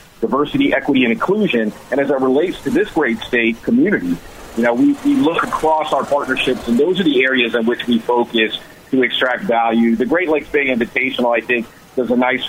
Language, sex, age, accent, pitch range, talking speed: English, male, 40-59, American, 120-155 Hz, 205 wpm